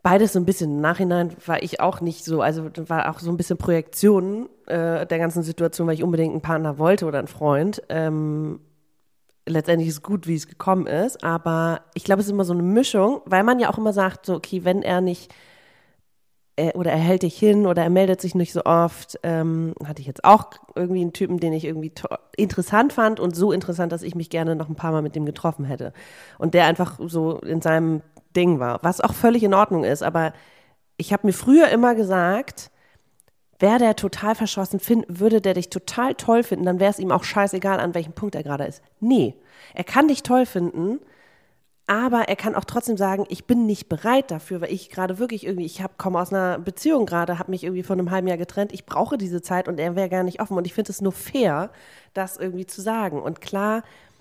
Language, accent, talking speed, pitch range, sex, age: German, German, 225 wpm, 165-200 Hz, female, 30-49